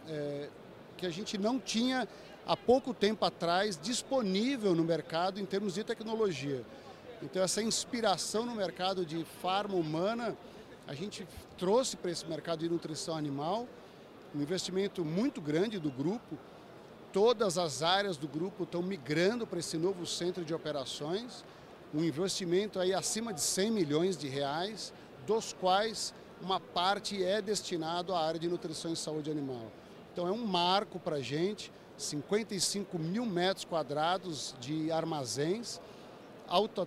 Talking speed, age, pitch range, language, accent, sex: 140 wpm, 50-69, 165-205 Hz, Portuguese, Brazilian, male